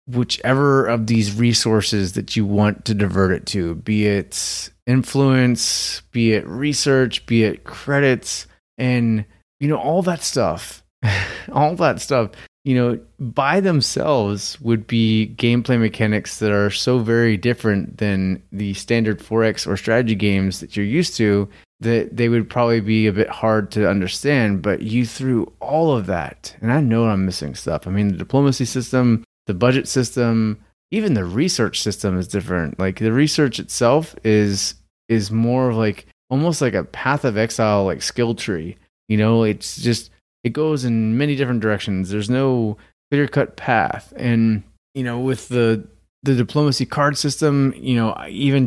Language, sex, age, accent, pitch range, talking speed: English, male, 30-49, American, 105-130 Hz, 165 wpm